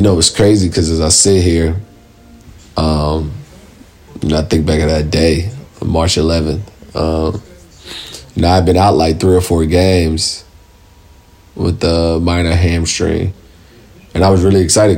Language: English